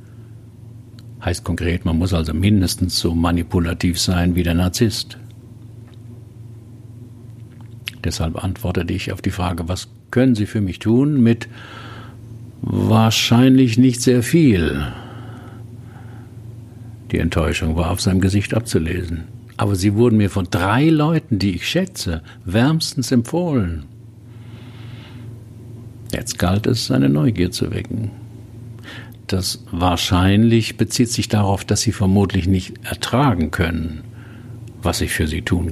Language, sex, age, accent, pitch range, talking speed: German, male, 60-79, German, 95-115 Hz, 120 wpm